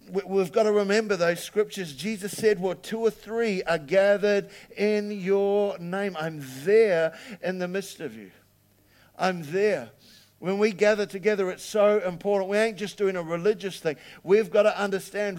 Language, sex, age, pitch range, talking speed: English, male, 50-69, 175-210 Hz, 170 wpm